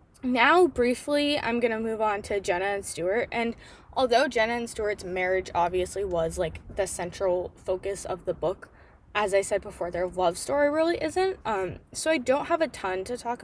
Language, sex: English, female